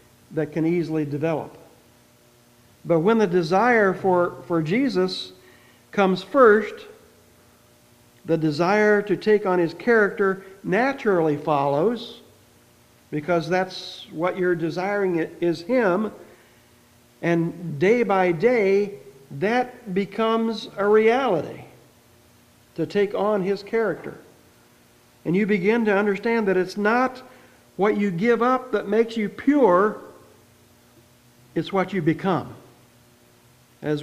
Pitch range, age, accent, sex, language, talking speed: 160-205 Hz, 60-79, American, male, English, 110 wpm